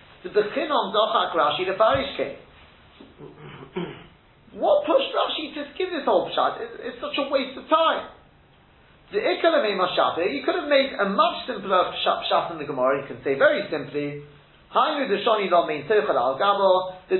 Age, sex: 30-49, male